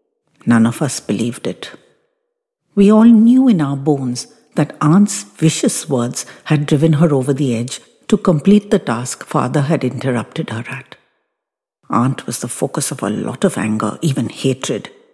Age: 60-79